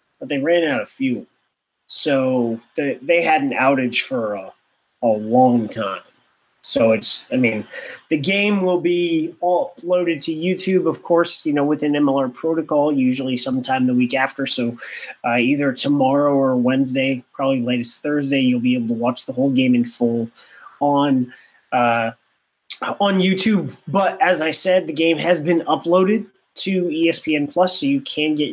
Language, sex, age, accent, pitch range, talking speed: English, male, 20-39, American, 130-195 Hz, 170 wpm